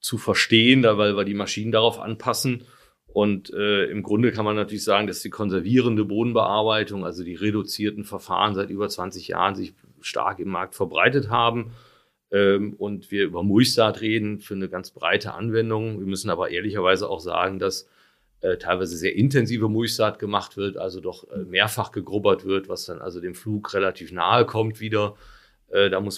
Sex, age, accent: male, 40-59, German